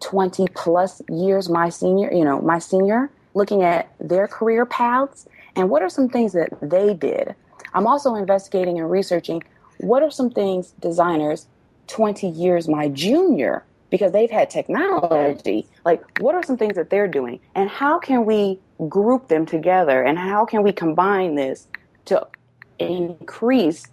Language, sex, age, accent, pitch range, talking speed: English, female, 30-49, American, 160-210 Hz, 160 wpm